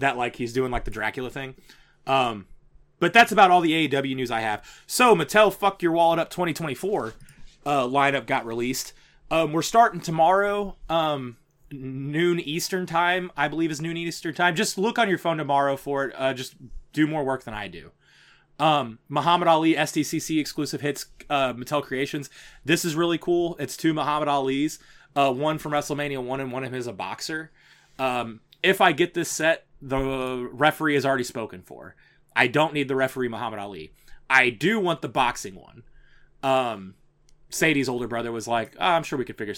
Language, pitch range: English, 125-165 Hz